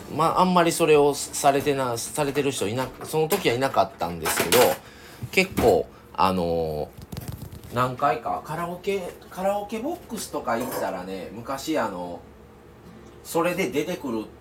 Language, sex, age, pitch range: Japanese, male, 40-59, 95-145 Hz